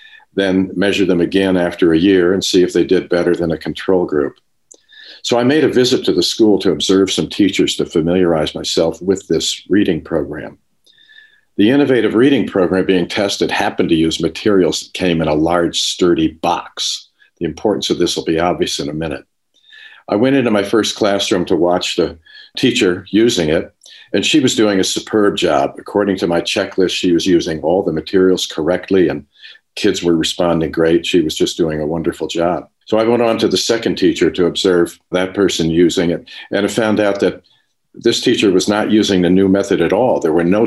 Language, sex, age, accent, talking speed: English, male, 50-69, American, 200 wpm